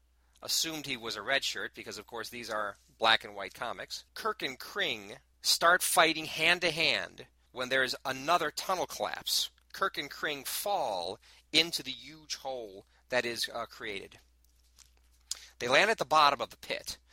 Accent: American